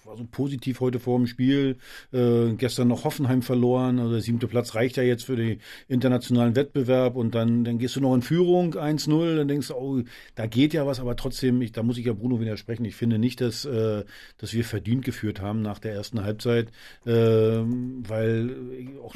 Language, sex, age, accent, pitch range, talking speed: German, male, 50-69, German, 115-135 Hz, 205 wpm